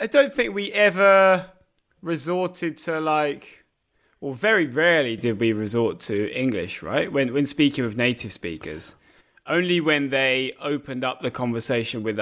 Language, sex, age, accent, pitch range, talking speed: English, male, 20-39, British, 110-145 Hz, 155 wpm